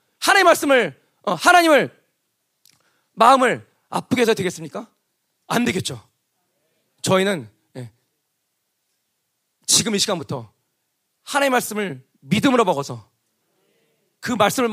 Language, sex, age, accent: Korean, male, 40-59, native